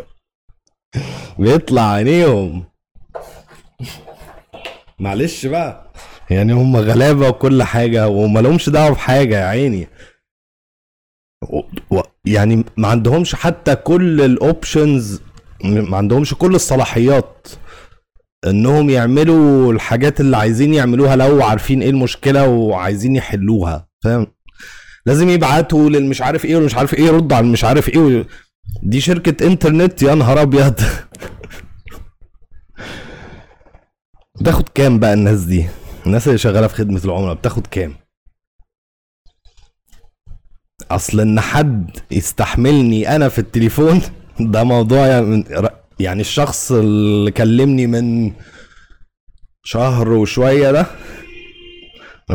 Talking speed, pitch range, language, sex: 105 wpm, 100-140 Hz, Arabic, male